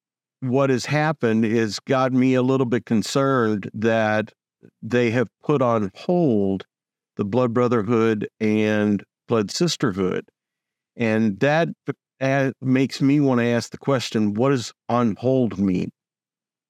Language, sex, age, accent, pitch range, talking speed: English, male, 50-69, American, 110-130 Hz, 130 wpm